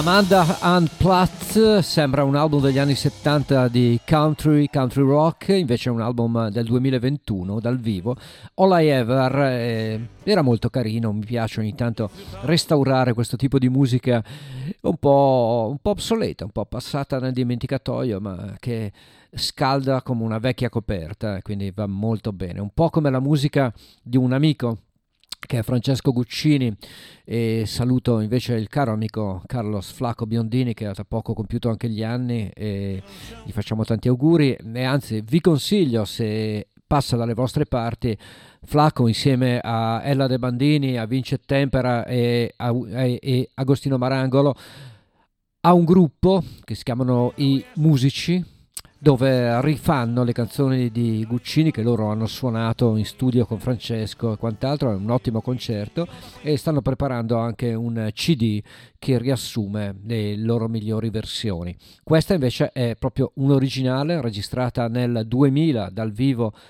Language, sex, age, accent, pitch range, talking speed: Italian, male, 50-69, native, 110-140 Hz, 150 wpm